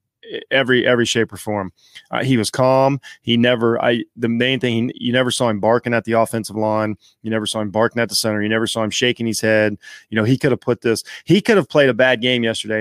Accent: American